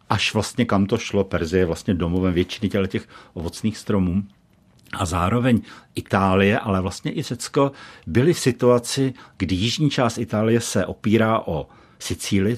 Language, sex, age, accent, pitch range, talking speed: Czech, male, 60-79, native, 95-120 Hz, 155 wpm